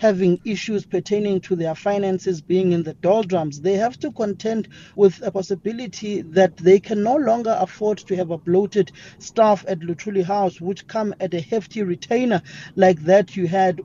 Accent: South African